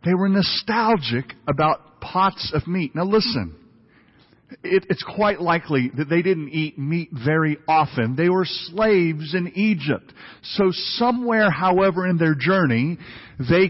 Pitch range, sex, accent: 145-220 Hz, male, American